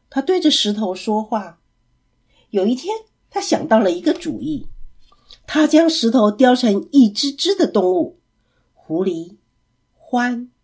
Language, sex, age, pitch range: Chinese, female, 50-69, 200-300 Hz